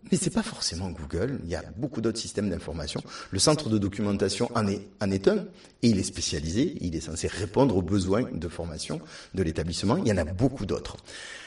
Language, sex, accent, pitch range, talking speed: French, male, French, 105-145 Hz, 220 wpm